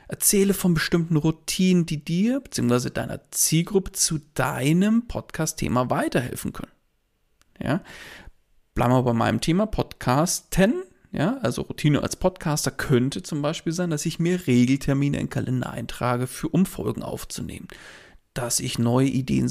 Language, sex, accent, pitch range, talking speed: German, male, German, 130-170 Hz, 130 wpm